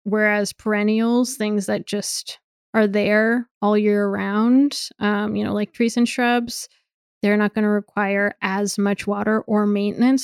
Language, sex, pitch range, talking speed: English, female, 205-235 Hz, 160 wpm